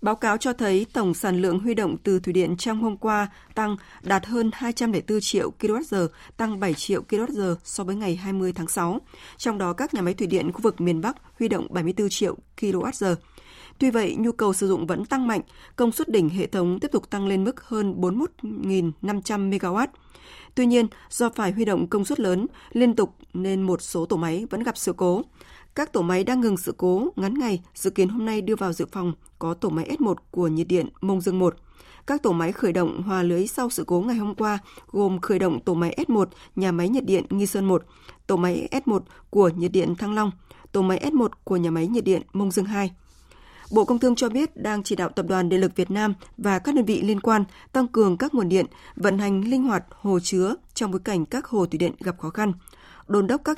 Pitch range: 180-225 Hz